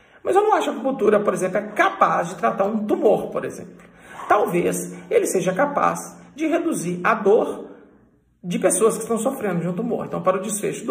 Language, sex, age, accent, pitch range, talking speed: Portuguese, male, 50-69, Brazilian, 165-210 Hz, 210 wpm